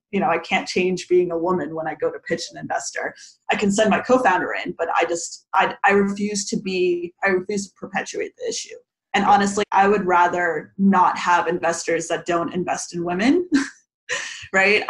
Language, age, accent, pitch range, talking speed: English, 20-39, American, 175-200 Hz, 195 wpm